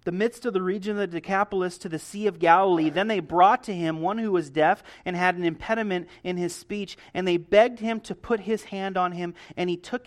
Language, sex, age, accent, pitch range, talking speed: English, male, 30-49, American, 165-215 Hz, 250 wpm